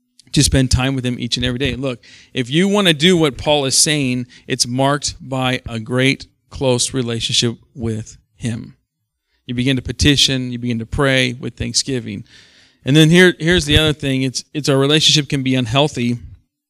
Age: 40-59